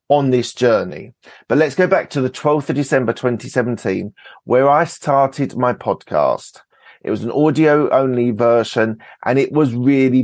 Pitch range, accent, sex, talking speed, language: 115-135 Hz, British, male, 165 wpm, English